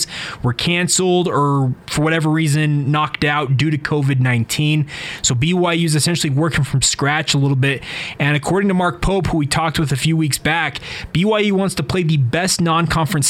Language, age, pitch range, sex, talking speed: English, 20-39, 135-165 Hz, male, 185 wpm